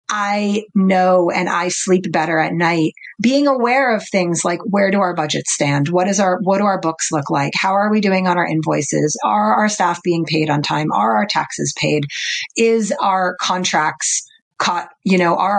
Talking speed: 200 wpm